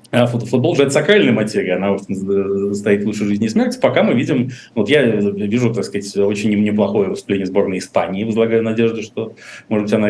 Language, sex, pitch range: Russian, male, 105-130 Hz